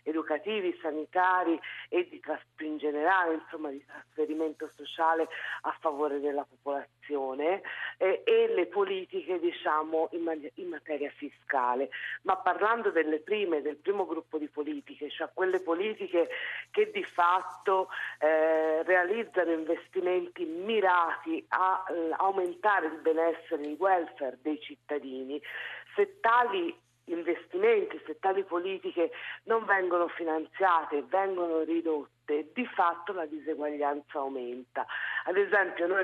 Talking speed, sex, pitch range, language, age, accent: 120 wpm, female, 155-210 Hz, Italian, 50-69, native